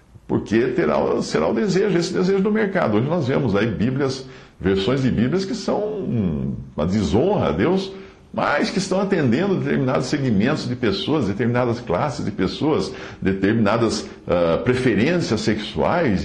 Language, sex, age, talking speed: English, male, 60-79, 145 wpm